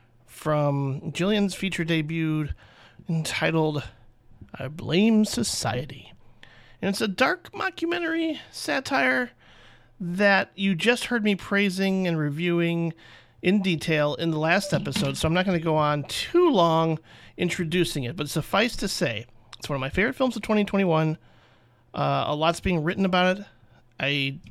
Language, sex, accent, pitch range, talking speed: English, male, American, 135-180 Hz, 145 wpm